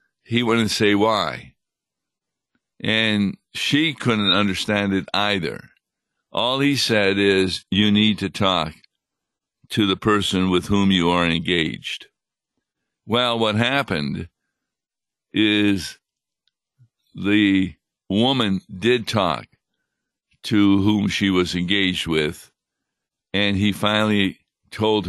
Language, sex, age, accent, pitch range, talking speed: English, male, 60-79, American, 95-110 Hz, 105 wpm